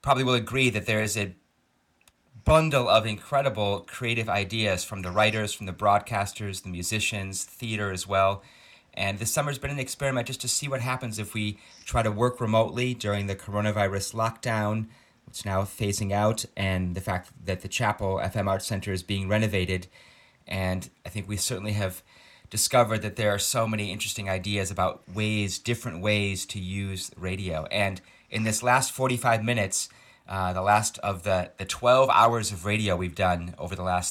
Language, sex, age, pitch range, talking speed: English, male, 30-49, 95-115 Hz, 180 wpm